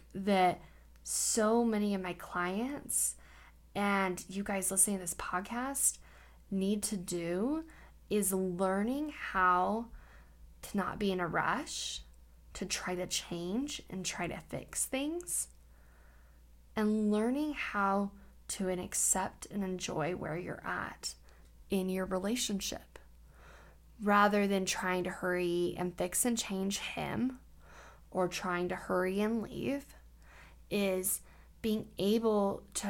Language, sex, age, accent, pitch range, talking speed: English, female, 10-29, American, 180-225 Hz, 120 wpm